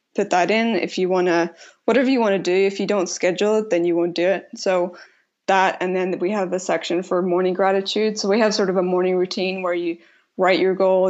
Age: 20-39